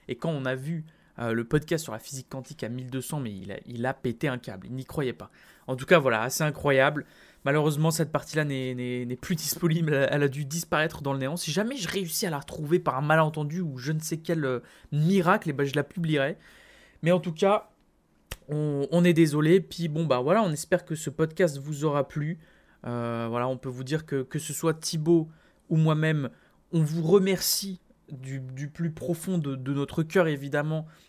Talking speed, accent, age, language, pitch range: 220 wpm, French, 20-39, French, 135-170 Hz